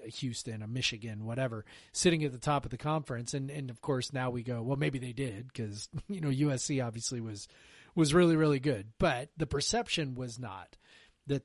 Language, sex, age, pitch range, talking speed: English, male, 30-49, 120-145 Hz, 200 wpm